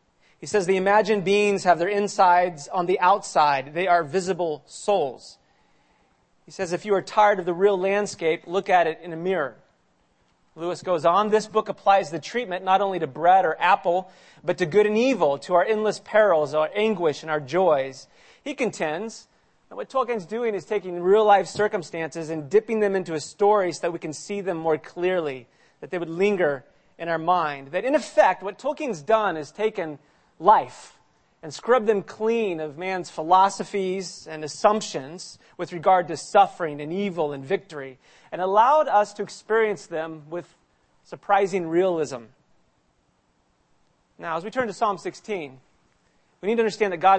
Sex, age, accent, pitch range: male, 30-49, American, 160-205 Hz